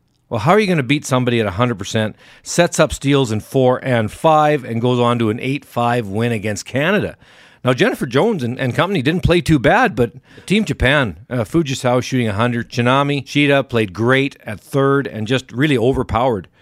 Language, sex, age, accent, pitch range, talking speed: English, male, 50-69, American, 120-155 Hz, 190 wpm